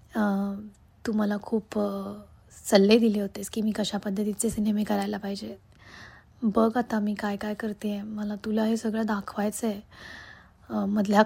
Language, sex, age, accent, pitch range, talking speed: Marathi, female, 20-39, native, 205-230 Hz, 145 wpm